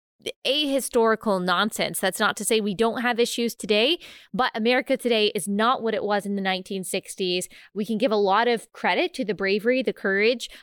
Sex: female